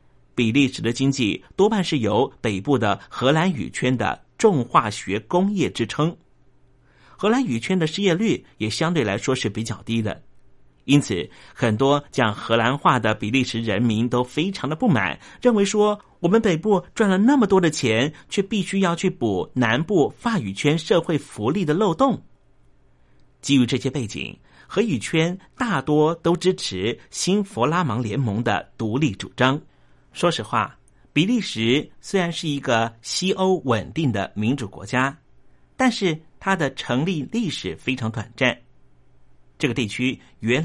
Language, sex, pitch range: Chinese, male, 120-180 Hz